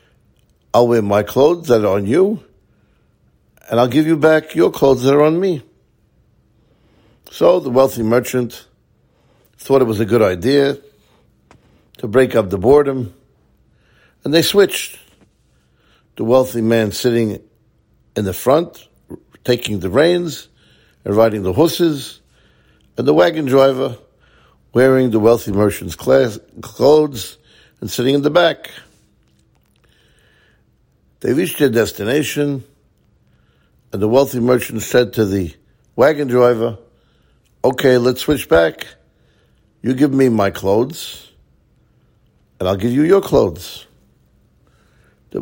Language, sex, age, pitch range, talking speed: English, male, 60-79, 100-135 Hz, 125 wpm